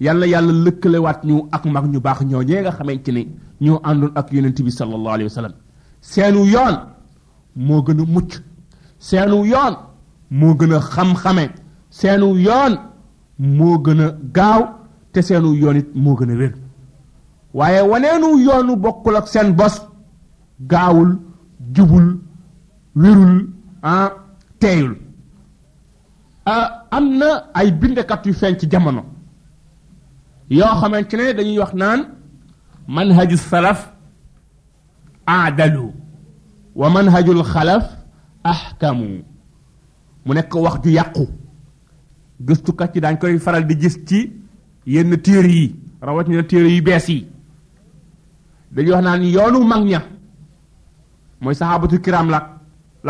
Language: French